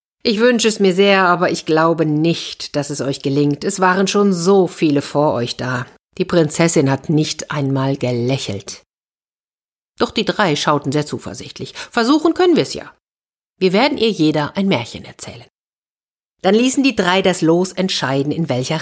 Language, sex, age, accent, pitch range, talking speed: German, female, 50-69, German, 140-185 Hz, 170 wpm